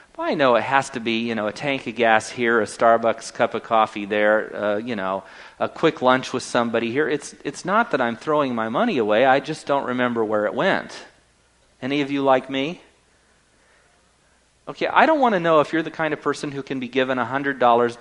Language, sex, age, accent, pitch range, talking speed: English, male, 40-59, American, 110-150 Hz, 220 wpm